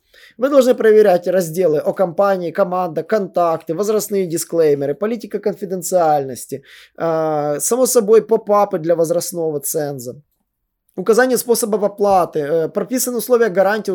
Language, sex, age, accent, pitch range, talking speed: Russian, male, 20-39, native, 155-205 Hz, 105 wpm